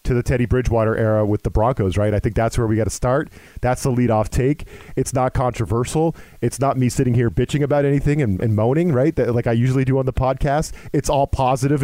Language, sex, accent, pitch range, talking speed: English, male, American, 115-150 Hz, 240 wpm